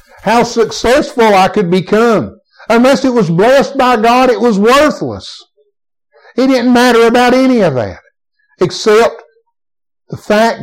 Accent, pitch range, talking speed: American, 155-235 Hz, 135 wpm